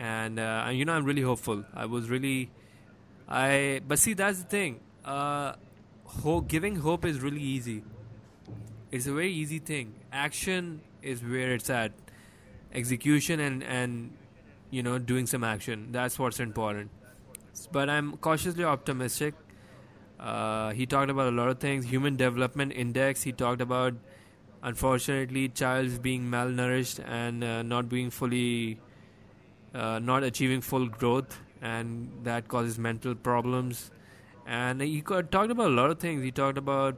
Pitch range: 115-135 Hz